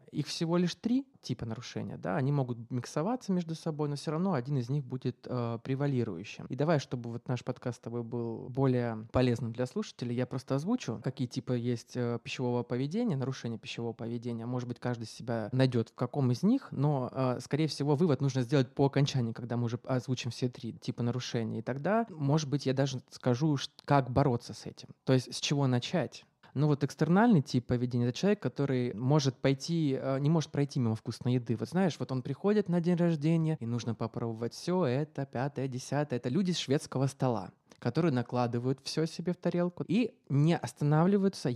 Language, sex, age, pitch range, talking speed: Russian, male, 20-39, 125-155 Hz, 190 wpm